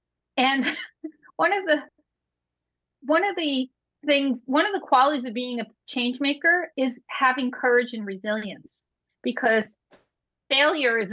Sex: female